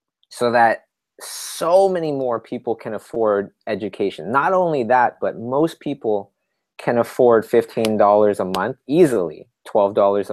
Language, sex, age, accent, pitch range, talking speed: English, male, 30-49, American, 110-150 Hz, 130 wpm